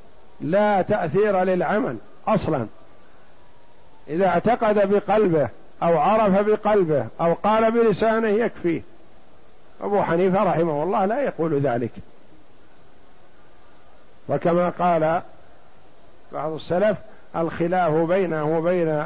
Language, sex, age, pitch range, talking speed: Arabic, male, 50-69, 165-200 Hz, 90 wpm